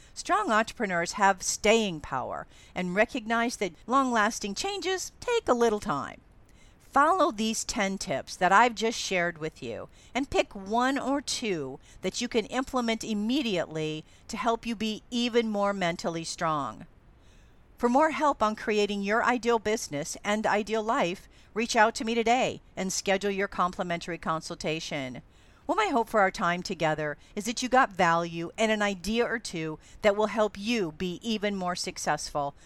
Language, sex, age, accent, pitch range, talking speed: English, female, 50-69, American, 185-235 Hz, 160 wpm